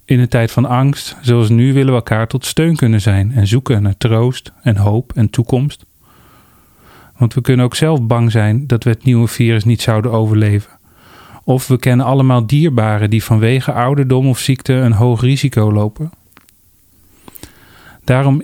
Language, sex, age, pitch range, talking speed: Dutch, male, 40-59, 105-130 Hz, 170 wpm